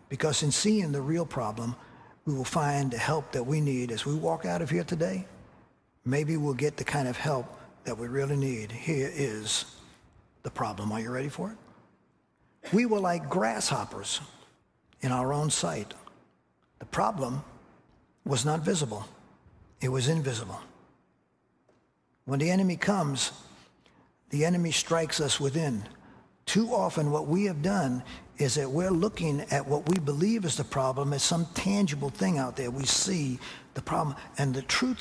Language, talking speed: English, 165 wpm